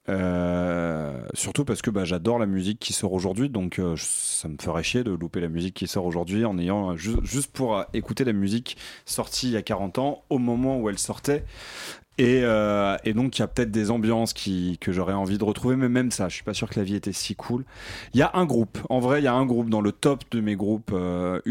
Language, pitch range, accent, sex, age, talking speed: French, 95-120 Hz, French, male, 30-49, 255 wpm